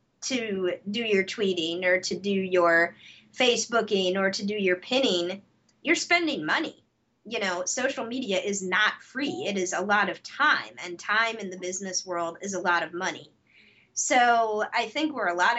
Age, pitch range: 20-39, 180-220 Hz